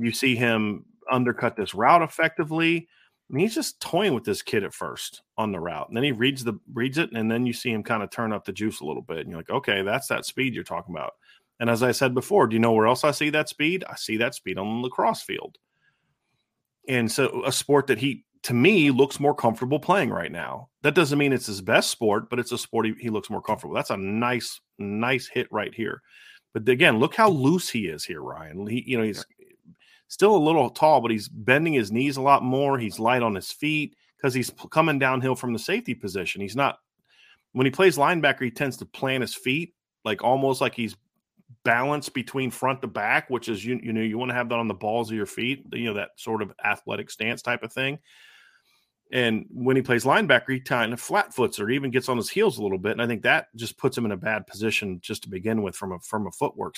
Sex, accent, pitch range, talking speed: male, American, 115-140 Hz, 245 wpm